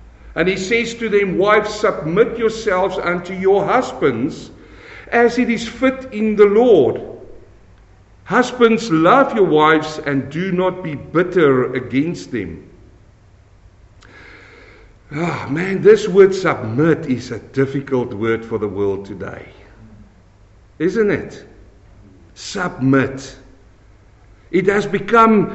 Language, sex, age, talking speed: English, male, 60-79, 115 wpm